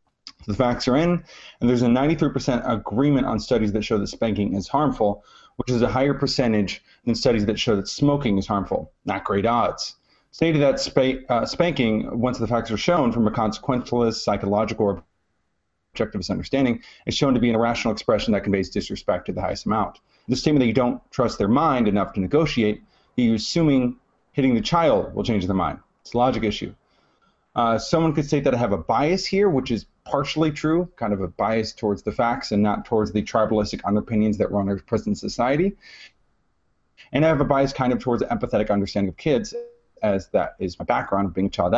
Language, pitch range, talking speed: English, 105-140 Hz, 205 wpm